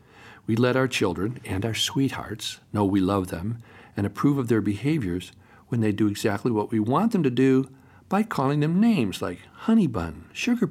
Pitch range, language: 110-170 Hz, English